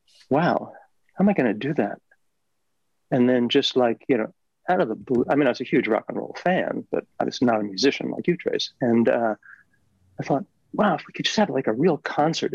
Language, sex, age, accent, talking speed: English, male, 40-59, American, 245 wpm